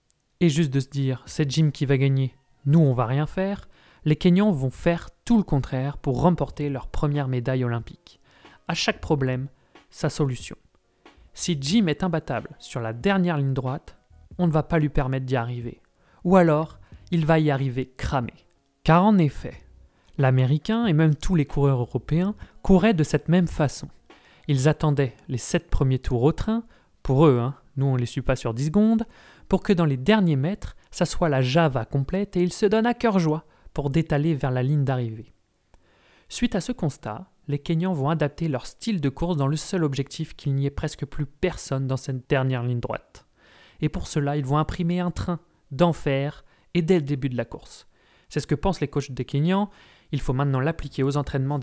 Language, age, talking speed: French, 30-49, 200 wpm